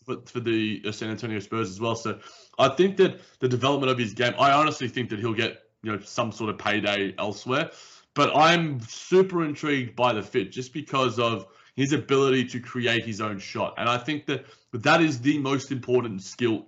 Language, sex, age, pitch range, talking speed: English, male, 20-39, 110-130 Hz, 210 wpm